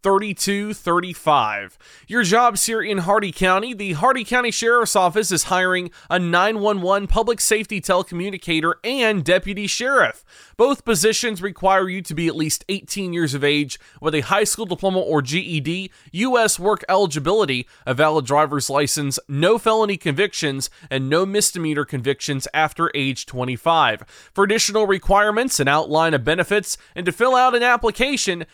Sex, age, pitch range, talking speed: male, 20-39, 155-210 Hz, 150 wpm